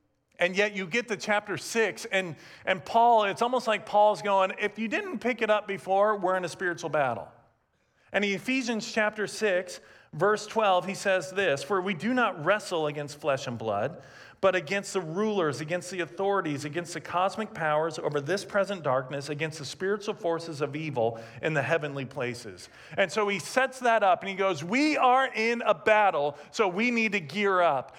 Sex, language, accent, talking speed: male, English, American, 195 wpm